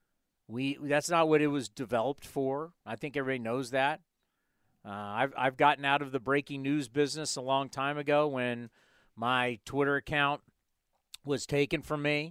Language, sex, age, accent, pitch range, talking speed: English, male, 50-69, American, 135-170 Hz, 170 wpm